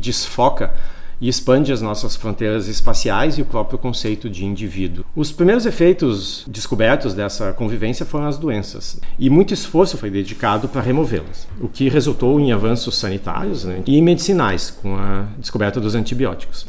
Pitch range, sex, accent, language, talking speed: 100-130 Hz, male, Brazilian, Portuguese, 155 wpm